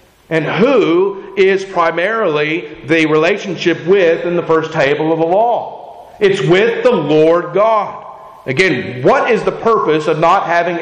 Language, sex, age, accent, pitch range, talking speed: English, male, 40-59, American, 160-210 Hz, 150 wpm